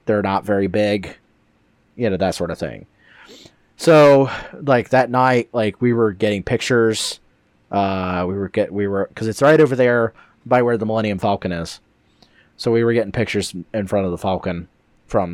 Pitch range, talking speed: 95-120 Hz, 185 wpm